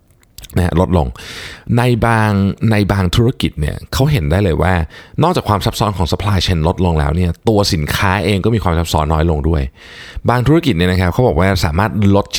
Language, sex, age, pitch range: Thai, male, 20-39, 80-105 Hz